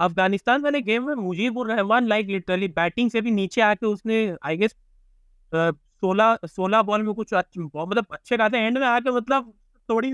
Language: Hindi